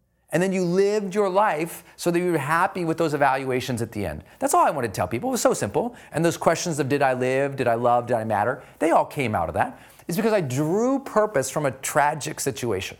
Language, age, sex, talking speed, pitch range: English, 40-59, male, 260 wpm, 130-195 Hz